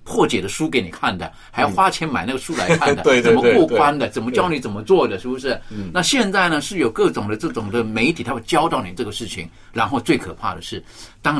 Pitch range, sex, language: 95-125 Hz, male, Chinese